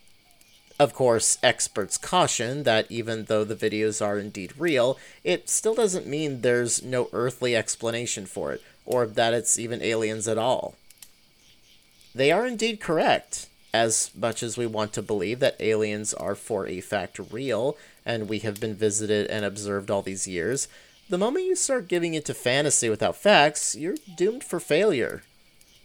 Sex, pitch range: male, 110-145 Hz